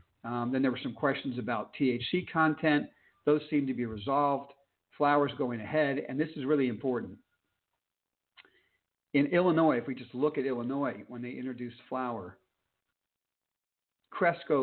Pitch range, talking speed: 110-150 Hz, 145 wpm